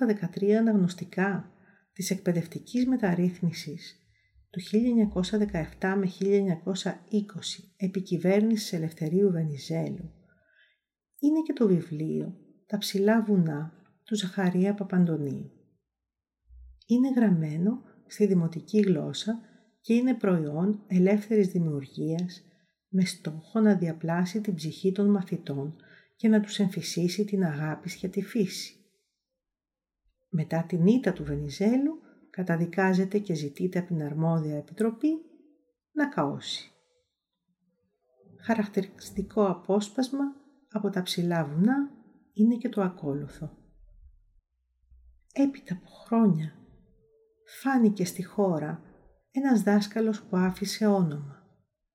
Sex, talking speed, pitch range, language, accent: female, 95 wpm, 170-215 Hz, Greek, native